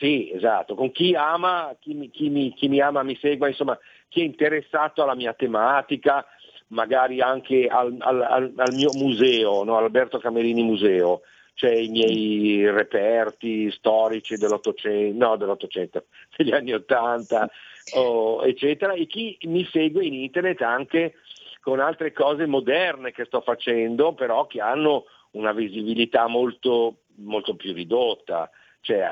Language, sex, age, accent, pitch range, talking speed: Italian, male, 50-69, native, 110-145 Hz, 145 wpm